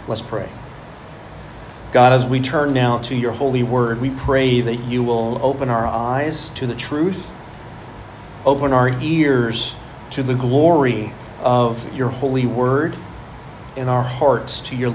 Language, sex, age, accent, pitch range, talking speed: English, male, 40-59, American, 120-140 Hz, 150 wpm